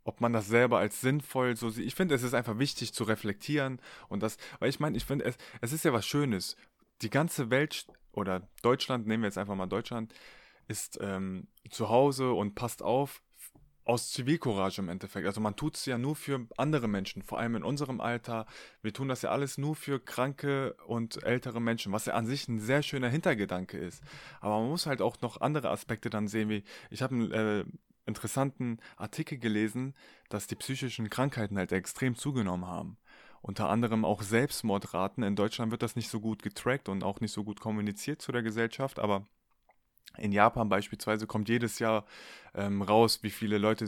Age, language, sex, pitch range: 20-39, German, male, 110-130 Hz